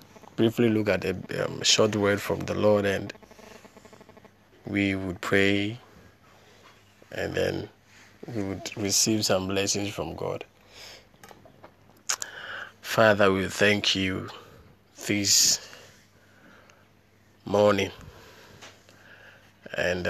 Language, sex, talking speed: English, male, 90 wpm